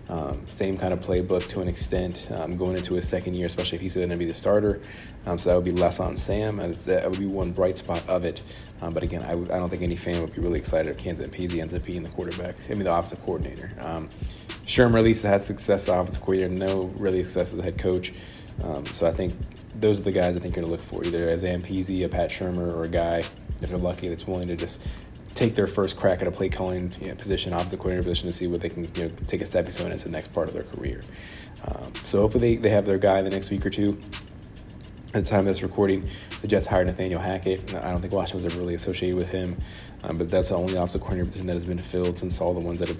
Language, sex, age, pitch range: English, male, 20-39, 85-95 Hz